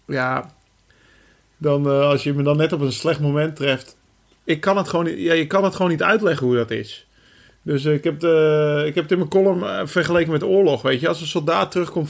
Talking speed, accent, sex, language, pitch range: 250 wpm, Dutch, male, Dutch, 135-155 Hz